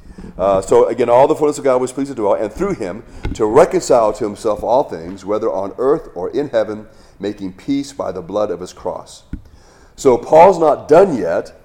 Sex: male